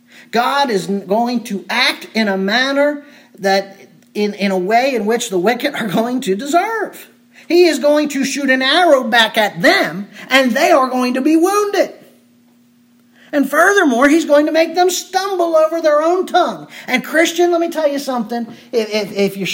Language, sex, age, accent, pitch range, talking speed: English, male, 40-59, American, 210-285 Hz, 185 wpm